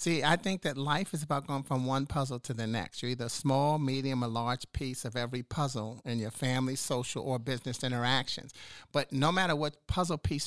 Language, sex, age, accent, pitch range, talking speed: English, male, 50-69, American, 125-155 Hz, 220 wpm